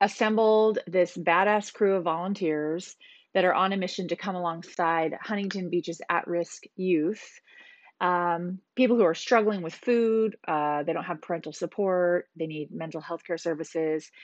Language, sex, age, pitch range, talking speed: English, female, 30-49, 165-205 Hz, 155 wpm